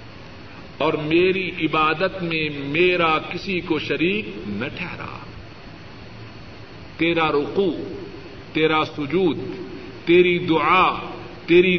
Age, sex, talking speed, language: 50-69, male, 85 wpm, Urdu